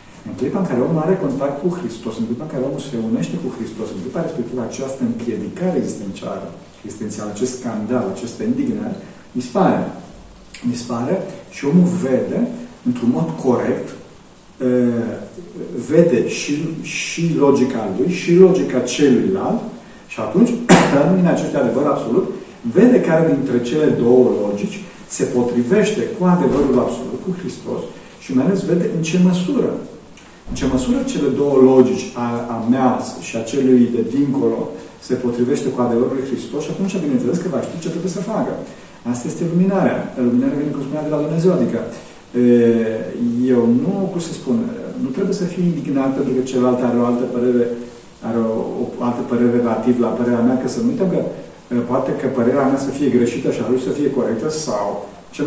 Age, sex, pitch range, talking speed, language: 40-59, male, 120-175 Hz, 170 wpm, Romanian